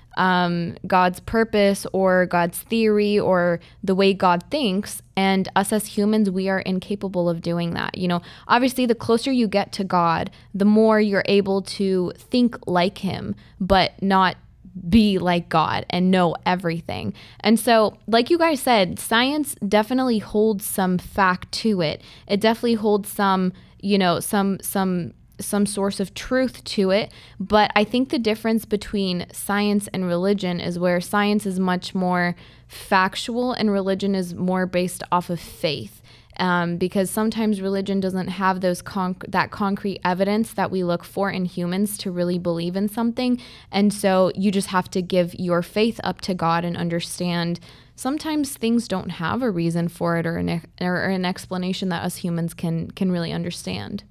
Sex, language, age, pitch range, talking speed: female, English, 20-39, 180-210 Hz, 170 wpm